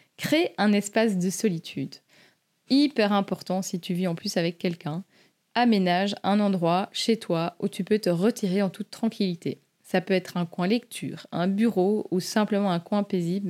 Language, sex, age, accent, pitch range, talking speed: French, female, 20-39, French, 175-205 Hz, 180 wpm